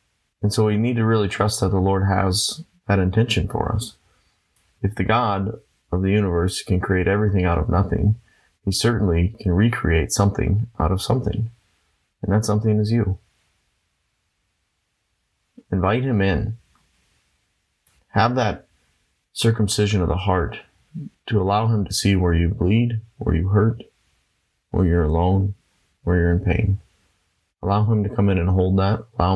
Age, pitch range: 30-49, 90-105 Hz